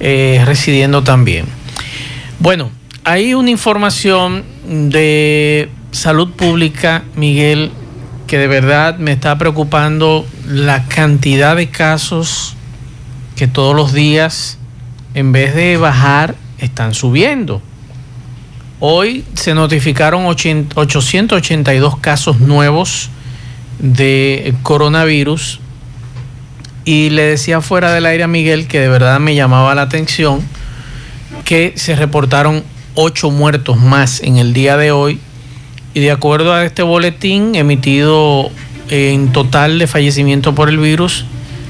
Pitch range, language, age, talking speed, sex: 130-155 Hz, Spanish, 50-69, 115 wpm, male